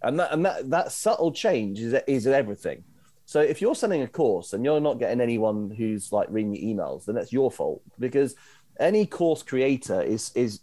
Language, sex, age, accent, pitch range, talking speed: English, male, 30-49, British, 110-140 Hz, 200 wpm